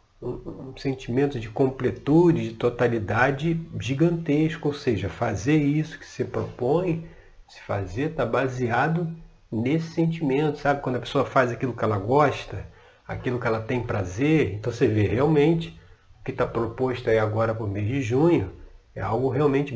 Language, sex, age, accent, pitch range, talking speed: Portuguese, male, 40-59, Brazilian, 110-150 Hz, 160 wpm